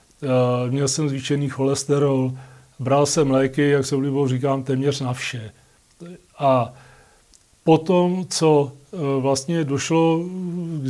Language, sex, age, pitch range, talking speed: Czech, male, 40-59, 140-155 Hz, 110 wpm